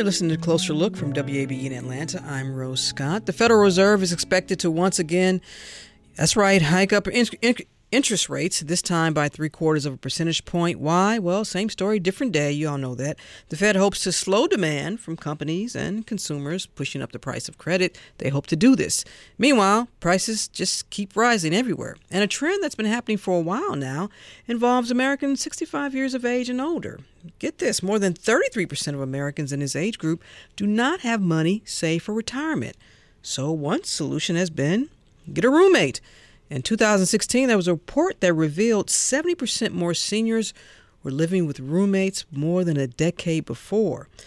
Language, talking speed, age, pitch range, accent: English, 185 wpm, 50-69, 160-230 Hz, American